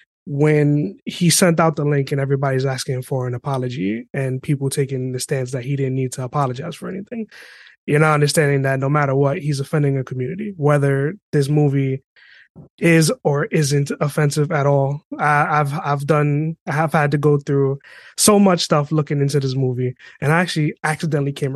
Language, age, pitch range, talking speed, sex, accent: English, 20-39, 140-165 Hz, 185 wpm, male, American